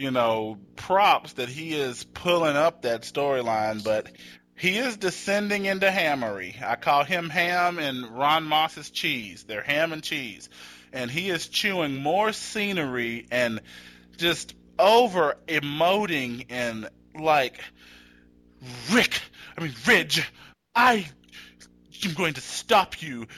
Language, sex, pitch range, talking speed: English, male, 120-175 Hz, 125 wpm